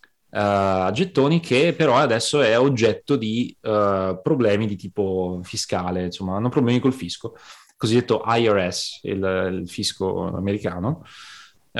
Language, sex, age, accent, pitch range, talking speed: Italian, male, 20-39, native, 95-135 Hz, 130 wpm